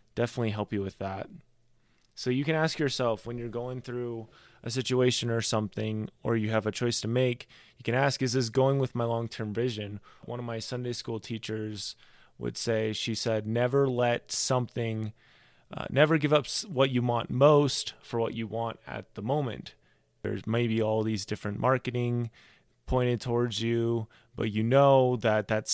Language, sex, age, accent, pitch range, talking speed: English, male, 20-39, American, 110-125 Hz, 180 wpm